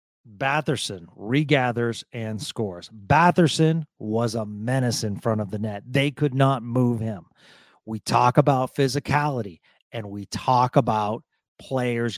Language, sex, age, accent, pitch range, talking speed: English, male, 40-59, American, 115-145 Hz, 135 wpm